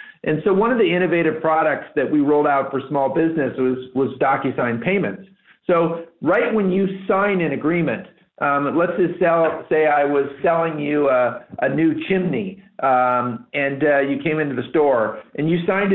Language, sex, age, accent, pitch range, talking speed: English, male, 50-69, American, 135-170 Hz, 185 wpm